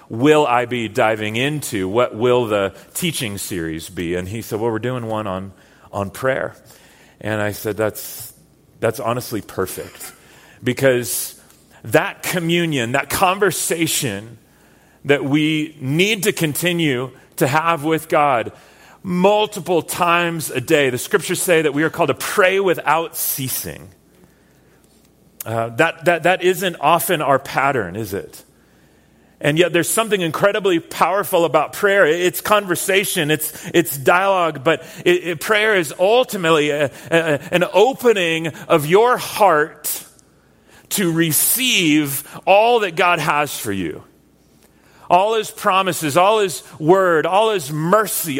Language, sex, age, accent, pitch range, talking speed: English, male, 40-59, American, 130-180 Hz, 130 wpm